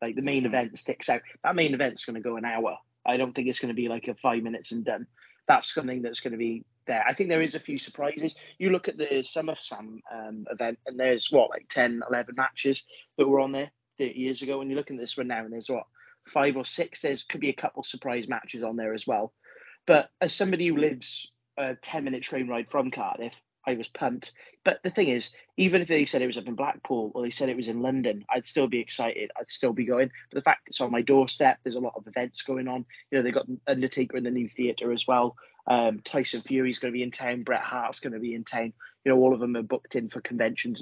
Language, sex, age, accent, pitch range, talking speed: English, male, 20-39, British, 120-140 Hz, 265 wpm